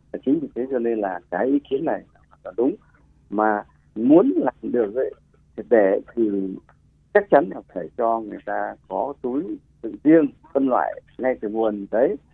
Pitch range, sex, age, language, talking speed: 100-145 Hz, male, 60-79, Vietnamese, 175 wpm